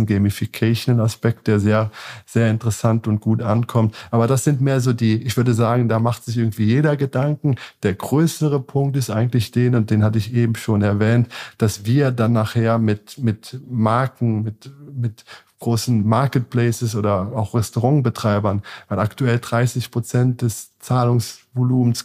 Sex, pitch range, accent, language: male, 110-125 Hz, German, German